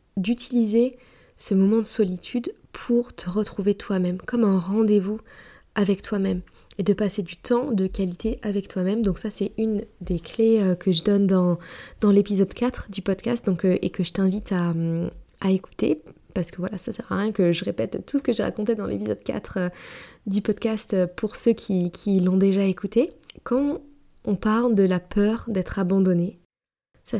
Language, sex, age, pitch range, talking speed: French, female, 20-39, 185-220 Hz, 185 wpm